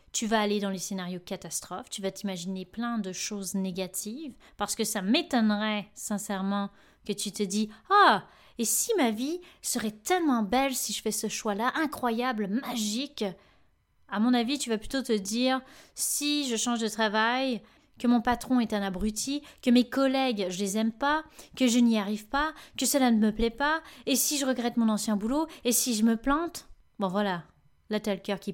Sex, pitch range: female, 200-255 Hz